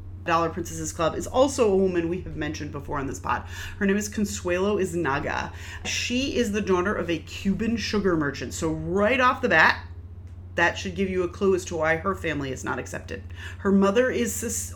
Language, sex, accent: English, female, American